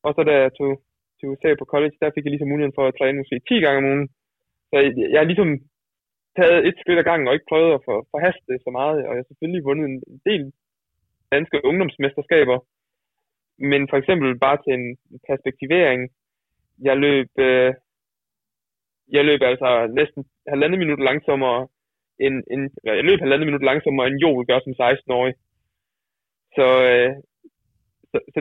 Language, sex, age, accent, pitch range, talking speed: Danish, male, 20-39, native, 125-145 Hz, 165 wpm